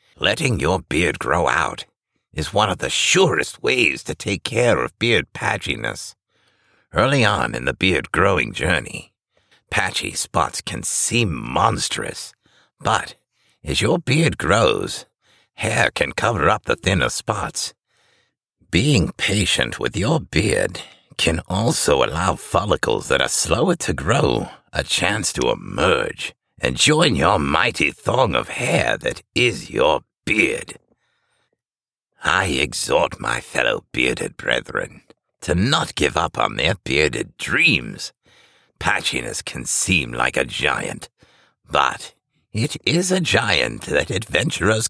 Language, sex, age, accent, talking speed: English, male, 60-79, American, 130 wpm